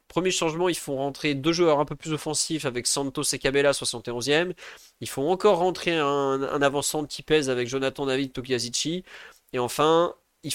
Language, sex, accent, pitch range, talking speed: French, male, French, 125-160 Hz, 190 wpm